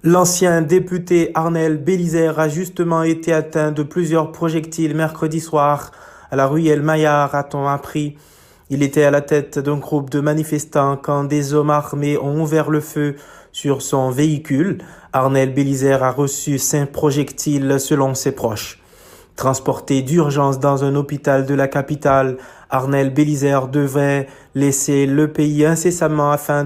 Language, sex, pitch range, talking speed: French, male, 135-150 Hz, 145 wpm